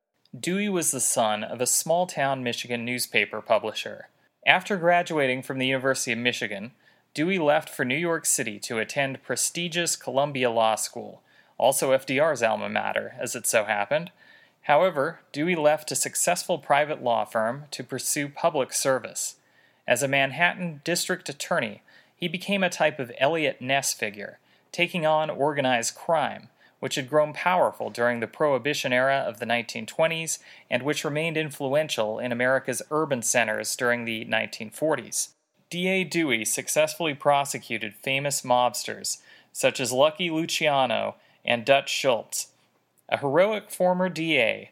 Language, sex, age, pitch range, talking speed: English, male, 30-49, 125-165 Hz, 140 wpm